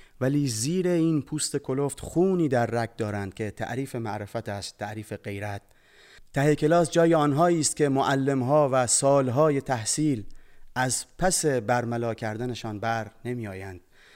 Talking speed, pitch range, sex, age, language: 140 wpm, 115-155 Hz, male, 30-49, Persian